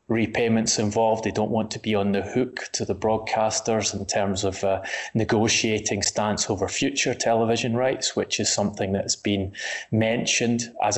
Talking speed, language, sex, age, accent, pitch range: 165 wpm, English, male, 20-39, British, 100-110 Hz